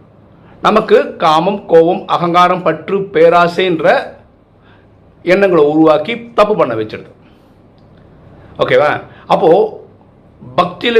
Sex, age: male, 50-69